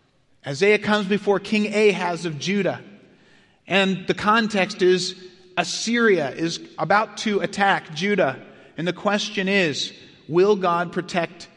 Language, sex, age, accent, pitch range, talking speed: English, male, 30-49, American, 155-205 Hz, 125 wpm